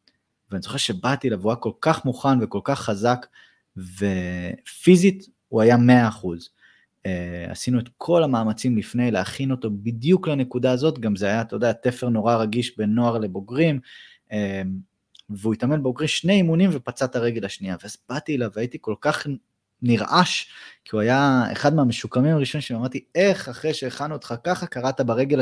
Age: 20-39